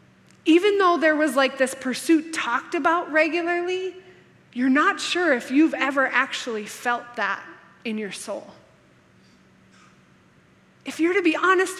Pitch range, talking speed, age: 245-320 Hz, 135 wpm, 20-39